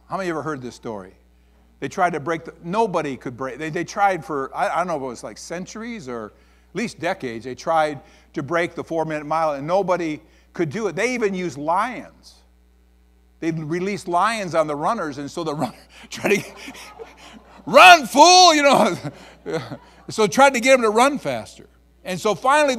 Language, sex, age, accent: English, male, 50-69, American